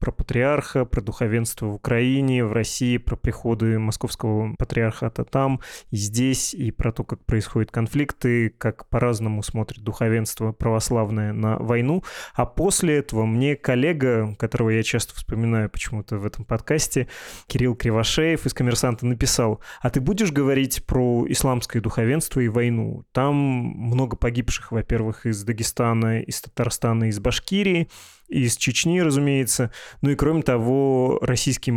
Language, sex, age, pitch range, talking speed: Russian, male, 20-39, 115-135 Hz, 140 wpm